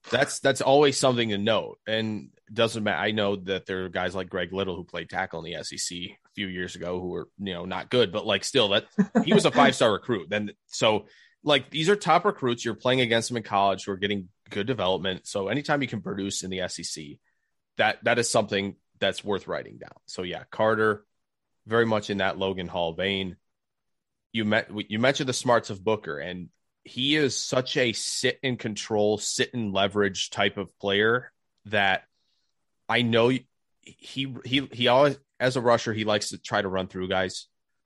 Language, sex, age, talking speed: English, male, 30-49, 205 wpm